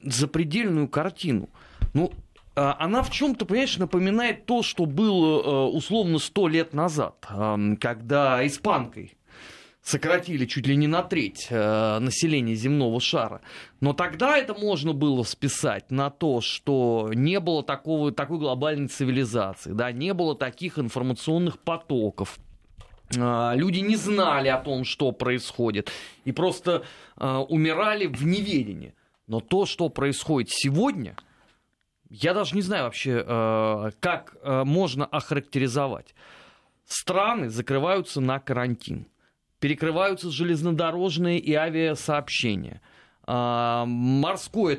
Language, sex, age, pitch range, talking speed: Russian, male, 20-39, 125-180 Hz, 110 wpm